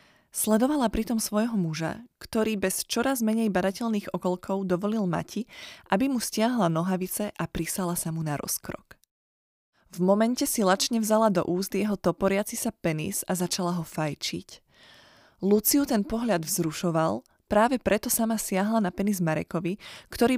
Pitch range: 175-220 Hz